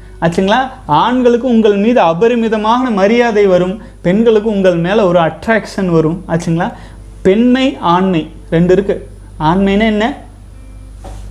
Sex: male